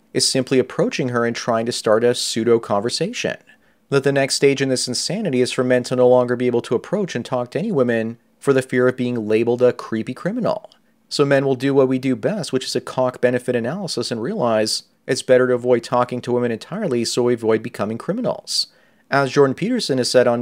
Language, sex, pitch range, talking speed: English, male, 120-140 Hz, 220 wpm